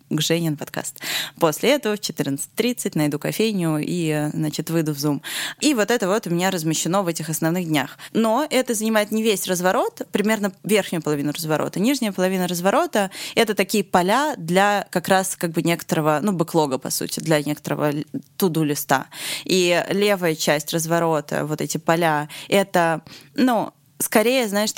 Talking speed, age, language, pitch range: 165 wpm, 20-39, Russian, 155-205 Hz